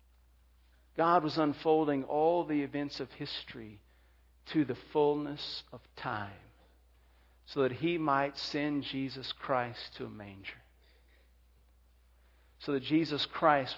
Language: English